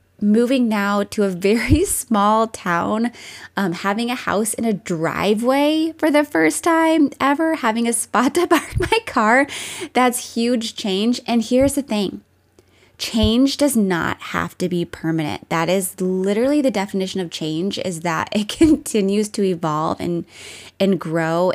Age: 20-39